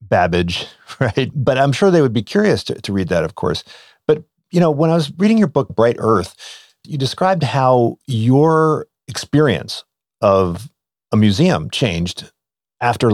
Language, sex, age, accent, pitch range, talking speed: English, male, 50-69, American, 95-140 Hz, 165 wpm